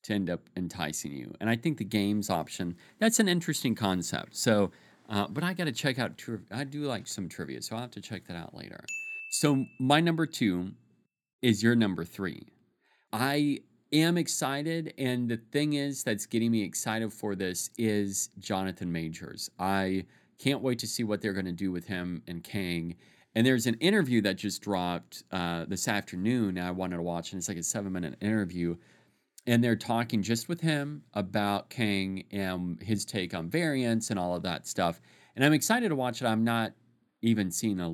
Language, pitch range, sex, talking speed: English, 95-135 Hz, male, 195 wpm